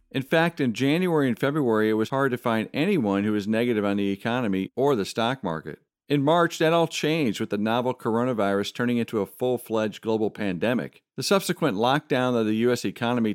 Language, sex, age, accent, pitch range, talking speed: English, male, 50-69, American, 110-150 Hz, 200 wpm